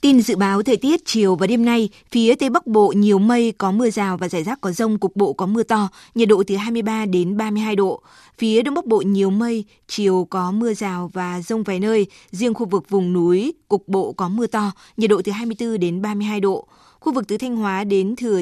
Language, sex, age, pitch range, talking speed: Vietnamese, female, 20-39, 190-225 Hz, 240 wpm